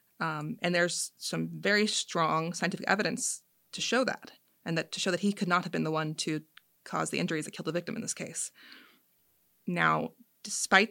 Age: 20-39